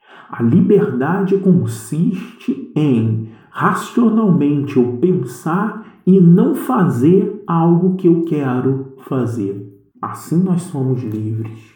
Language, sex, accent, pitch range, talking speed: Portuguese, male, Brazilian, 115-145 Hz, 95 wpm